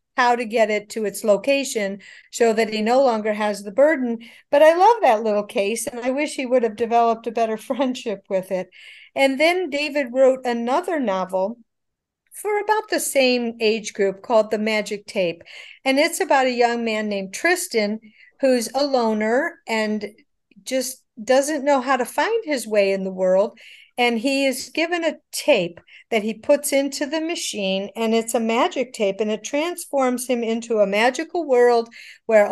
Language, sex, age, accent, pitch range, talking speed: English, female, 50-69, American, 215-275 Hz, 180 wpm